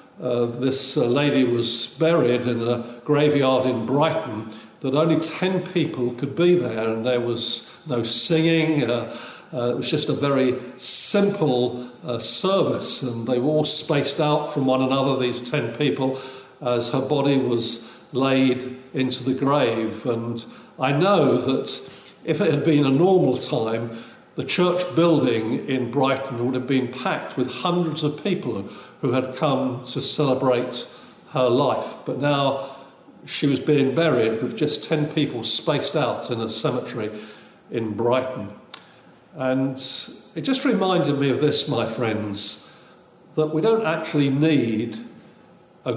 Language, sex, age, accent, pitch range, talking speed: English, male, 60-79, British, 120-150 Hz, 150 wpm